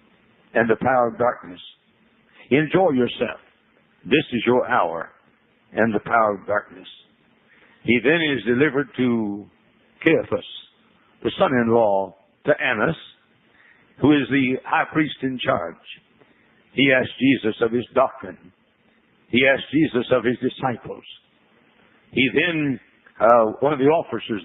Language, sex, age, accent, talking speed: English, male, 60-79, American, 130 wpm